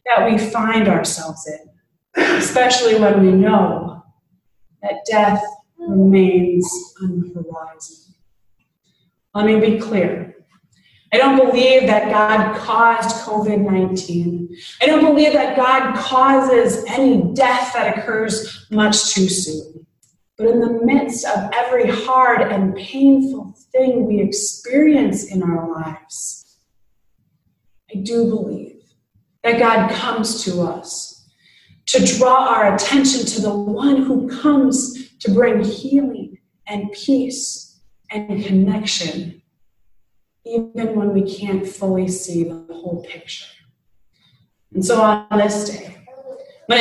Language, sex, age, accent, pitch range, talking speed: English, female, 30-49, American, 185-250 Hz, 115 wpm